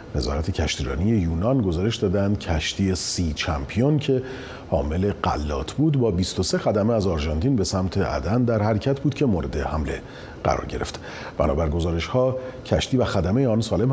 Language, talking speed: Persian, 155 wpm